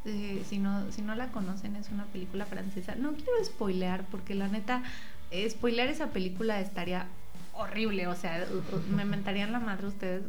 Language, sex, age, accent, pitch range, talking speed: Spanish, female, 20-39, Mexican, 185-230 Hz, 170 wpm